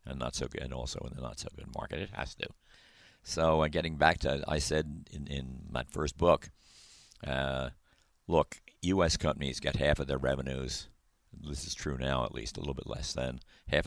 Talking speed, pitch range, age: 200 wpm, 70-85 Hz, 50-69